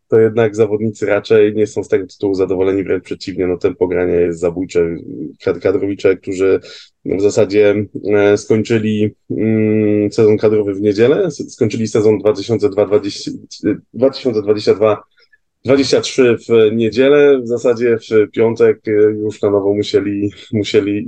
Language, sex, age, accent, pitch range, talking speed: Polish, male, 20-39, native, 105-135 Hz, 115 wpm